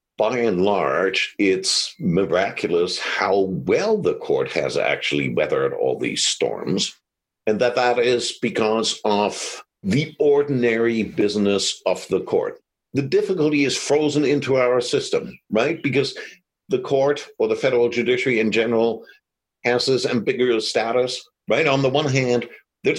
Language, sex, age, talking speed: English, male, 60-79, 140 wpm